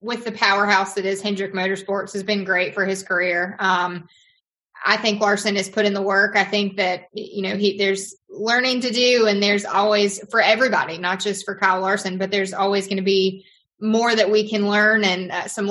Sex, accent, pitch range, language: female, American, 195-225 Hz, English